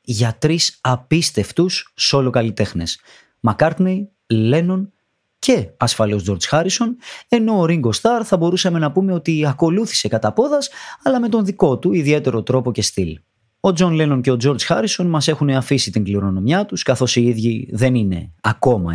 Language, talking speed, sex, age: Greek, 160 wpm, male, 30-49